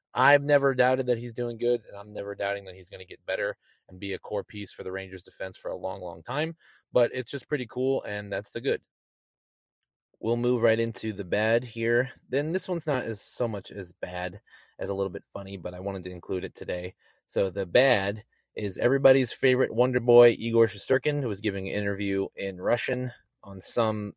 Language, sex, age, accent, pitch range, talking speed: English, male, 20-39, American, 95-120 Hz, 215 wpm